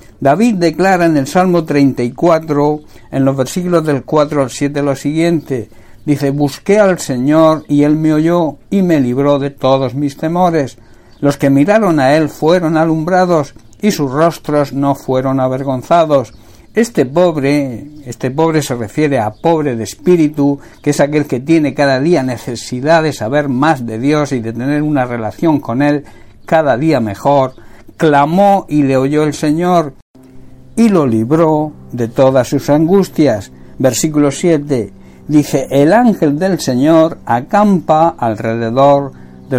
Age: 60-79